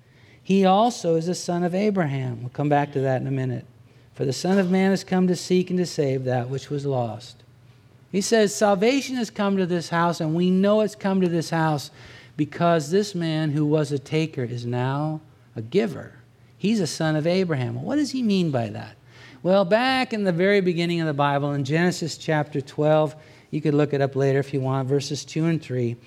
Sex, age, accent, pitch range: male, 60-79, American, 135-185 Hz